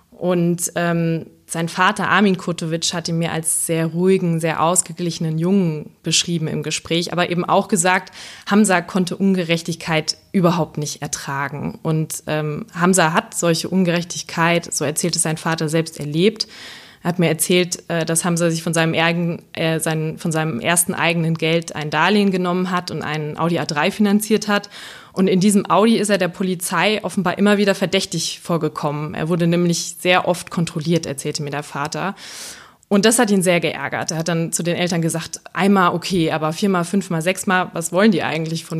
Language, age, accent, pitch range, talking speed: German, 20-39, German, 160-185 Hz, 180 wpm